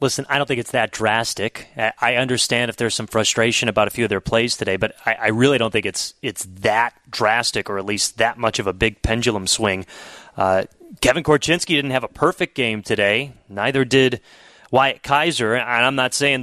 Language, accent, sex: English, American, male